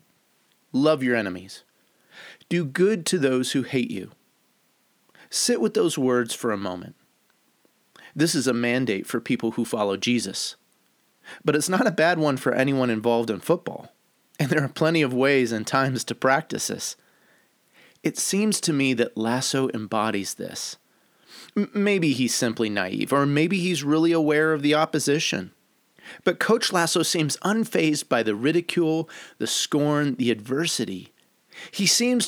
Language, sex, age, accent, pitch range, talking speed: English, male, 30-49, American, 130-180 Hz, 150 wpm